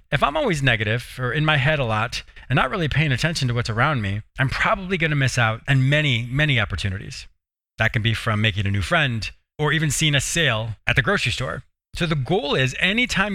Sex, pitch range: male, 120-160 Hz